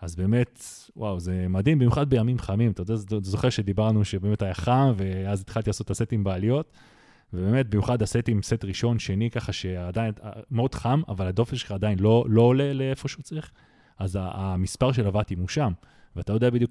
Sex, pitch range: male, 100-125 Hz